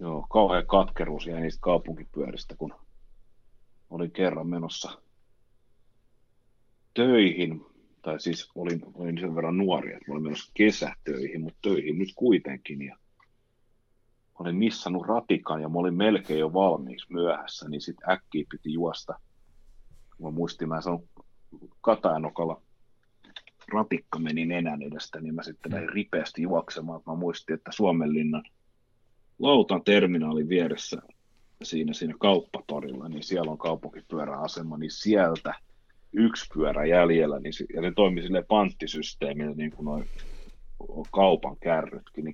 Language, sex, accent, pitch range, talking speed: Finnish, male, native, 80-105 Hz, 120 wpm